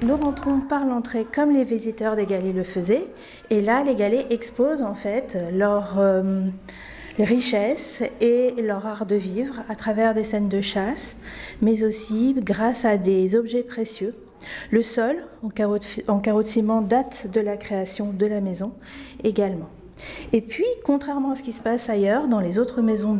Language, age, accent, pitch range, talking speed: French, 40-59, French, 200-250 Hz, 170 wpm